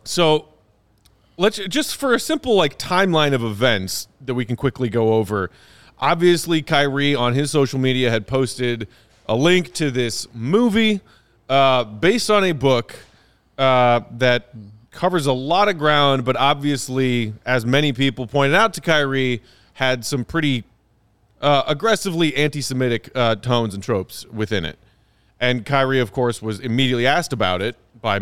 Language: English